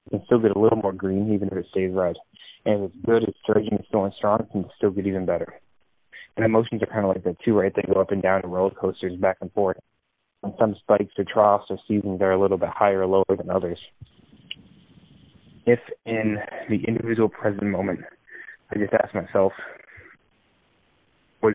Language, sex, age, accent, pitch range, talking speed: English, male, 20-39, American, 95-110 Hz, 210 wpm